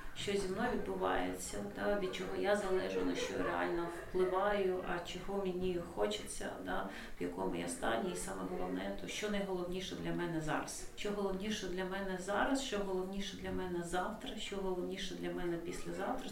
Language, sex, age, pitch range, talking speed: Ukrainian, female, 40-59, 160-205 Hz, 165 wpm